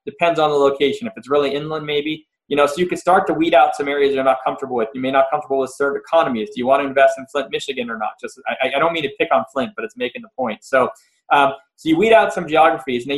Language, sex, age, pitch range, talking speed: English, male, 20-39, 135-170 Hz, 300 wpm